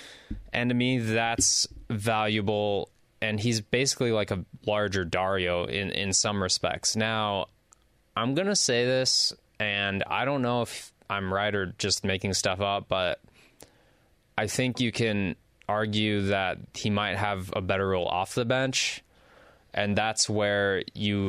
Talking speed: 150 wpm